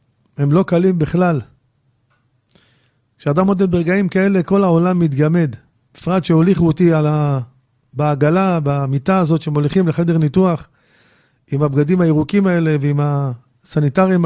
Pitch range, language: 130-180 Hz, Hebrew